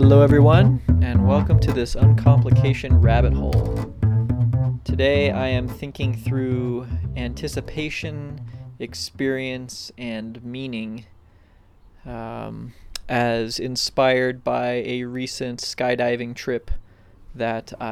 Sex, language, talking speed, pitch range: male, English, 90 wpm, 115-135 Hz